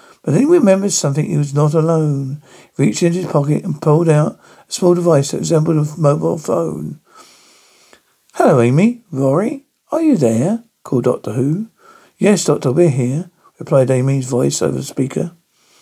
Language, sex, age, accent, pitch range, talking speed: English, male, 60-79, British, 135-175 Hz, 165 wpm